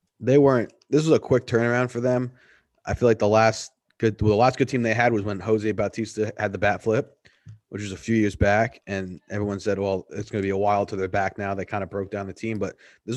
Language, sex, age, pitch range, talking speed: English, male, 30-49, 100-120 Hz, 270 wpm